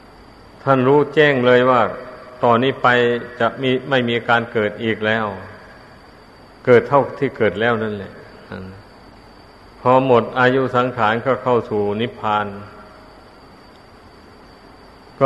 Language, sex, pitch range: Thai, male, 110-130 Hz